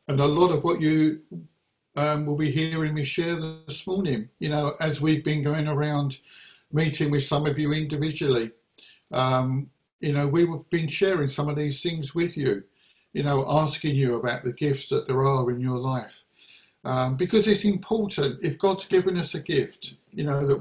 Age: 50-69